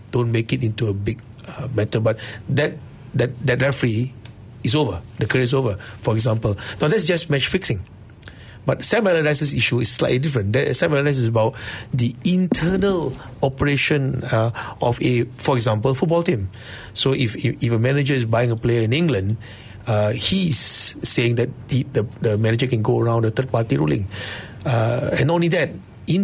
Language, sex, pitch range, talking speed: English, male, 115-145 Hz, 180 wpm